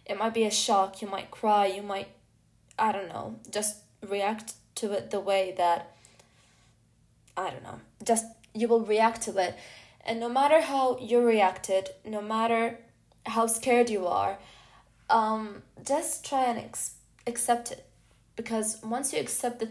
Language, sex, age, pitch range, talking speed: English, female, 10-29, 195-230 Hz, 160 wpm